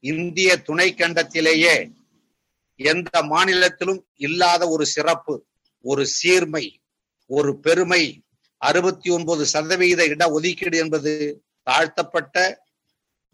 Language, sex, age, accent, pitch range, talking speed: Tamil, male, 50-69, native, 155-180 Hz, 75 wpm